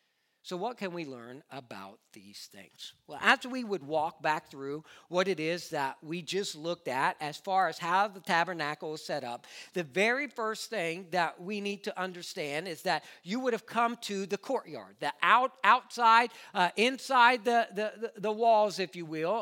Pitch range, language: 185-255 Hz, English